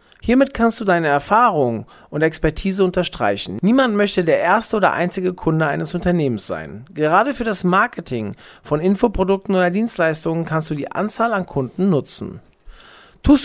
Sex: male